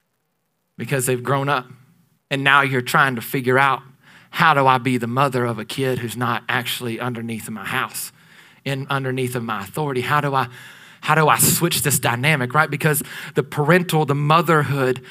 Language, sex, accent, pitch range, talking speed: English, male, American, 135-175 Hz, 185 wpm